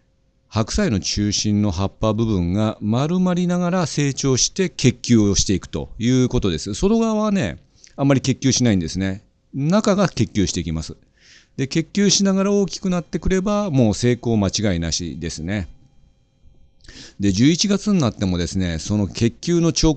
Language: Japanese